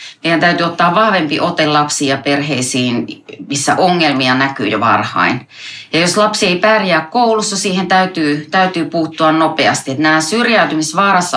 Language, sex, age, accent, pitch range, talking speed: Finnish, female, 30-49, native, 140-180 Hz, 135 wpm